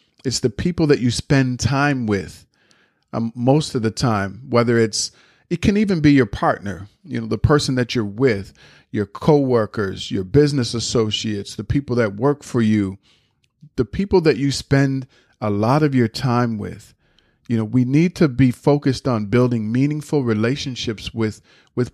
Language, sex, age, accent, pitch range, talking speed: English, male, 40-59, American, 110-135 Hz, 170 wpm